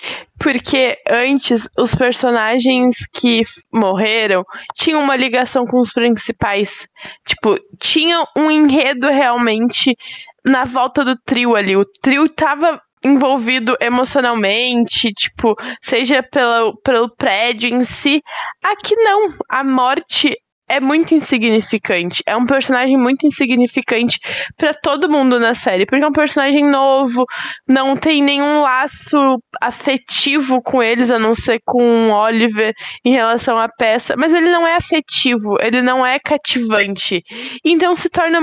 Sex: female